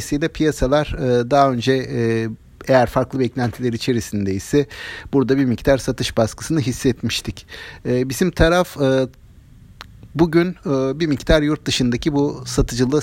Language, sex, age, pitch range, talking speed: Turkish, male, 50-69, 115-150 Hz, 105 wpm